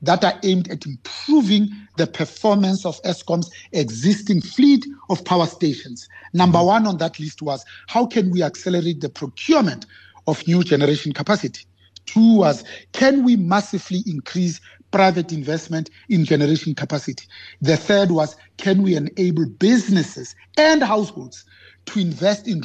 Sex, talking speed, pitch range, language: male, 140 wpm, 155-210 Hz, English